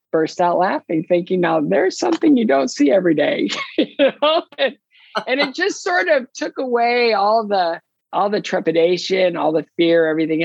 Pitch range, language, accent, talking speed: 150-205 Hz, English, American, 165 wpm